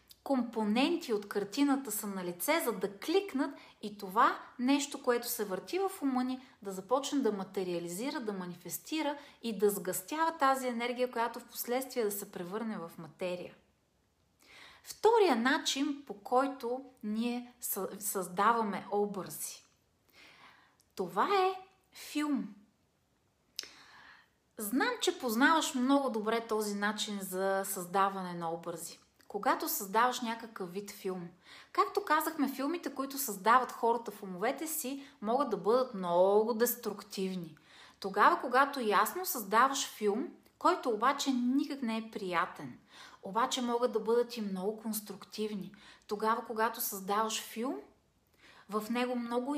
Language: Bulgarian